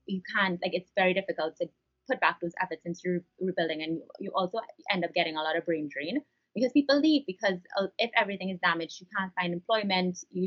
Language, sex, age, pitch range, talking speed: English, female, 20-39, 175-205 Hz, 220 wpm